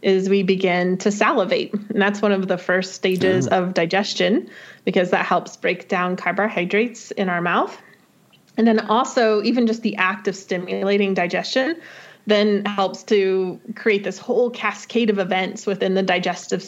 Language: English